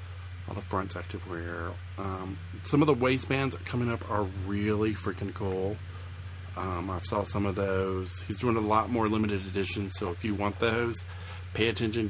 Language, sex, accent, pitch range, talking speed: English, male, American, 90-105 Hz, 175 wpm